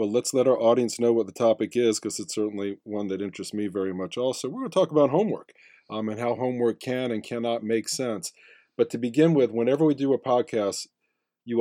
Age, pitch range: 40-59, 110-140 Hz